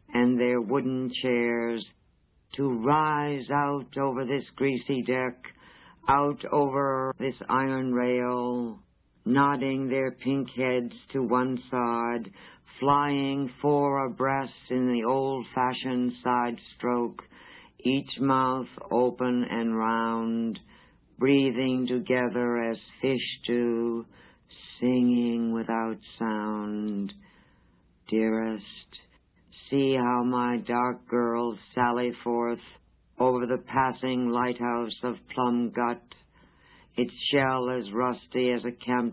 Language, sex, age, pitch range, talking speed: English, female, 60-79, 115-130 Hz, 100 wpm